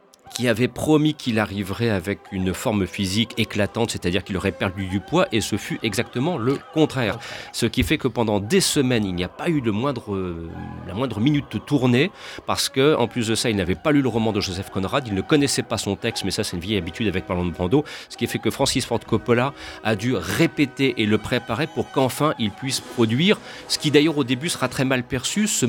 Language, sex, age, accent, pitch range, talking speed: French, male, 40-59, French, 105-135 Hz, 230 wpm